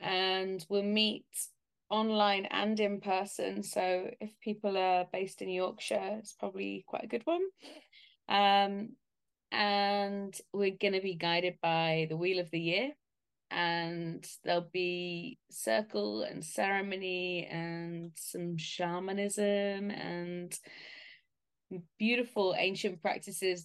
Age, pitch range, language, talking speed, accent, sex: 20-39, 175-210 Hz, English, 115 wpm, British, female